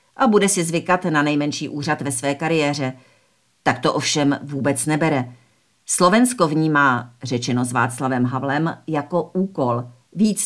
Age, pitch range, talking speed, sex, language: 50-69, 140-170 Hz, 140 wpm, female, Czech